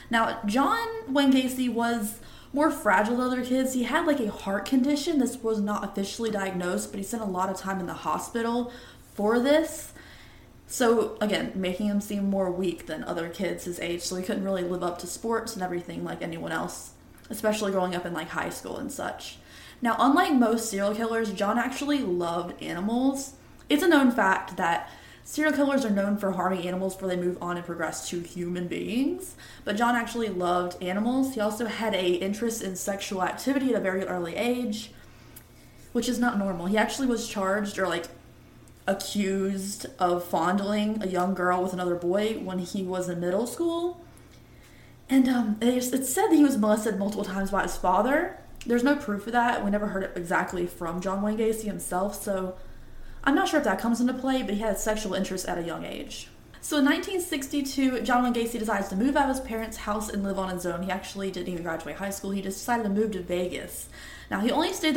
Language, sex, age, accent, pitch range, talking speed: English, female, 20-39, American, 185-250 Hz, 210 wpm